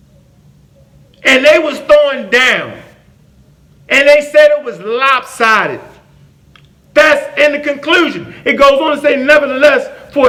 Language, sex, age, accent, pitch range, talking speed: English, male, 40-59, American, 205-265 Hz, 130 wpm